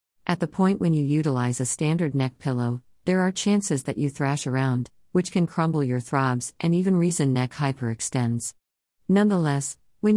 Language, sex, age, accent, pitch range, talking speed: English, female, 50-69, American, 130-160 Hz, 170 wpm